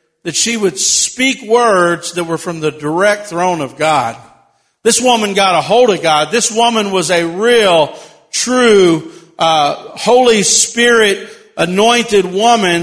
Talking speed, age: 145 wpm, 50-69